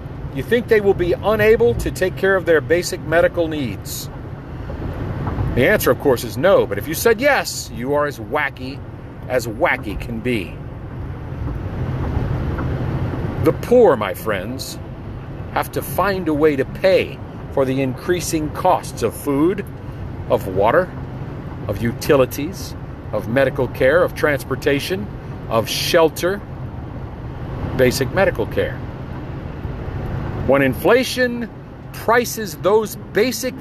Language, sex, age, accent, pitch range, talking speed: English, male, 50-69, American, 130-215 Hz, 125 wpm